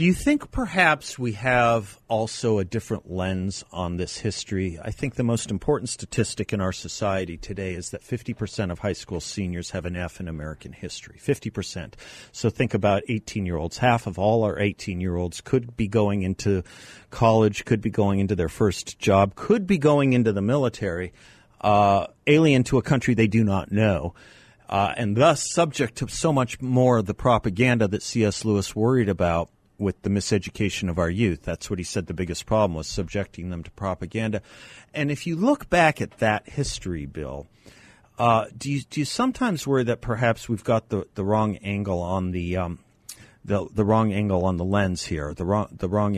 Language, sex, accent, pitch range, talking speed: English, male, American, 95-115 Hz, 190 wpm